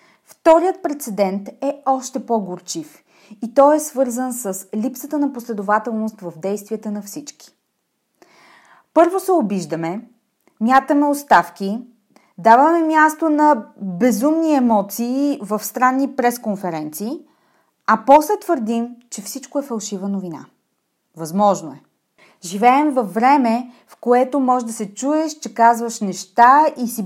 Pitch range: 215-285 Hz